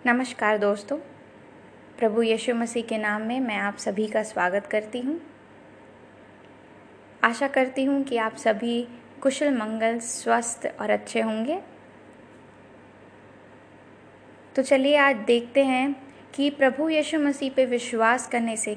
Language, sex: Hindi, female